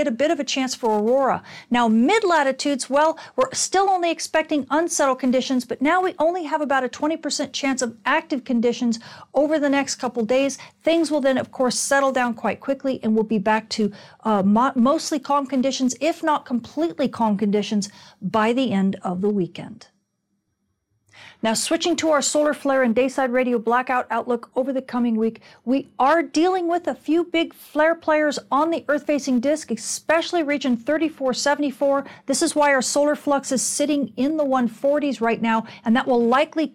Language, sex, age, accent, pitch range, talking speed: English, female, 40-59, American, 235-290 Hz, 180 wpm